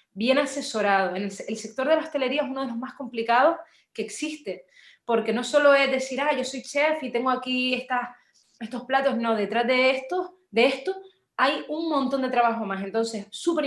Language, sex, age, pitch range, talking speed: Spanish, female, 30-49, 210-265 Hz, 200 wpm